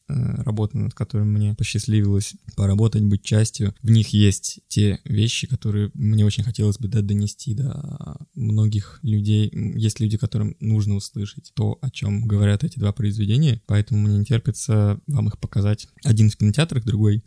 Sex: male